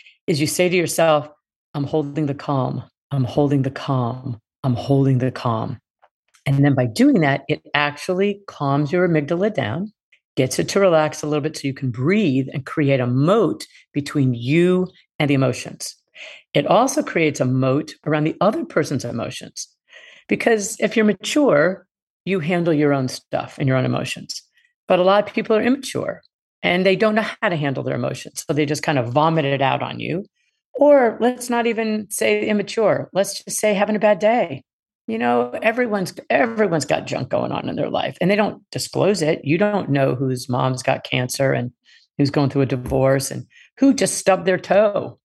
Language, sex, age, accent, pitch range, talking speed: English, female, 50-69, American, 140-200 Hz, 190 wpm